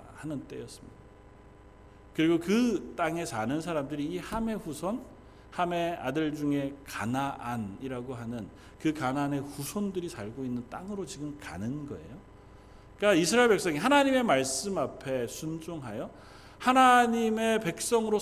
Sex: male